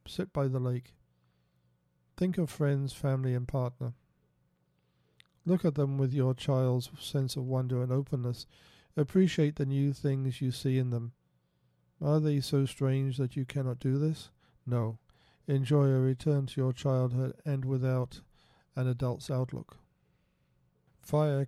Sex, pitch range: male, 125-140 Hz